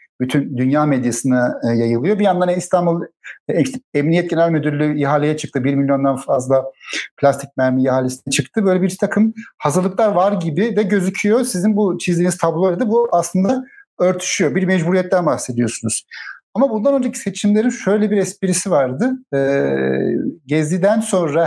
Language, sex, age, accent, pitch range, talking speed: Turkish, male, 60-79, native, 140-210 Hz, 135 wpm